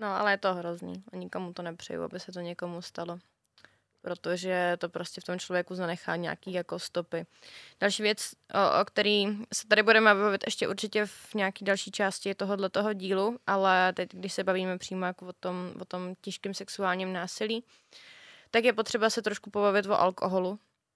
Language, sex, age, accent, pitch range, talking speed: Czech, female, 20-39, native, 190-220 Hz, 170 wpm